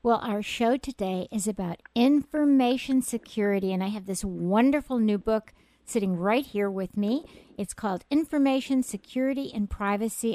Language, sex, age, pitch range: English, female, 50-69, 200-255 Hz